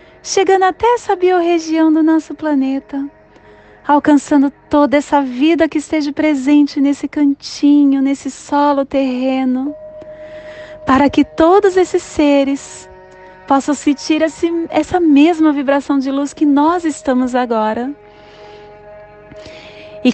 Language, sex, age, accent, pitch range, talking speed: Portuguese, female, 30-49, Brazilian, 245-310 Hz, 105 wpm